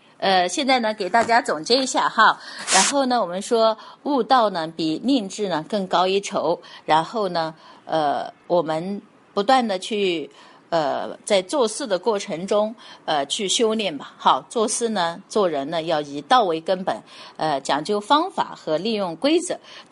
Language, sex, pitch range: Chinese, female, 180-255 Hz